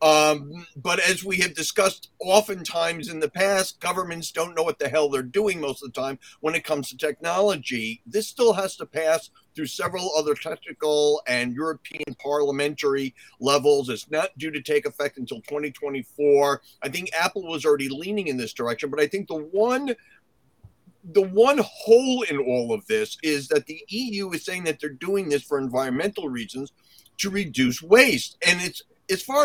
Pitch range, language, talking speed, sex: 150-225 Hz, English, 180 wpm, male